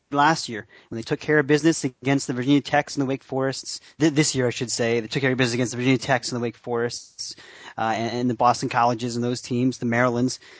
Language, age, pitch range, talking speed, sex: English, 30-49, 115-140 Hz, 250 wpm, male